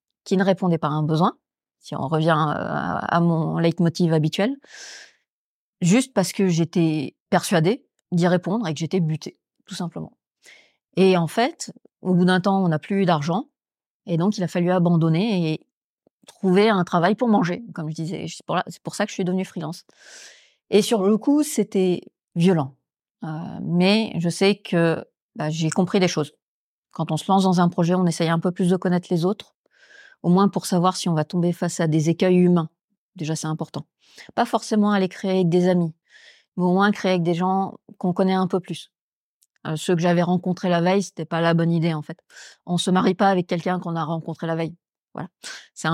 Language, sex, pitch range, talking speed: French, female, 165-195 Hz, 210 wpm